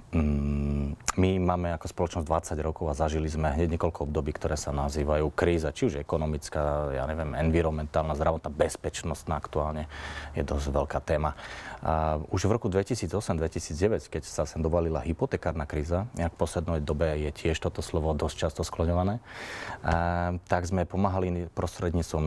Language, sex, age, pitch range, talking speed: Slovak, male, 30-49, 75-90 Hz, 145 wpm